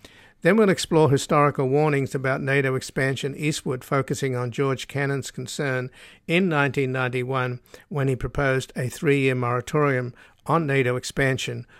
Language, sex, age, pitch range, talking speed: English, male, 60-79, 125-140 Hz, 130 wpm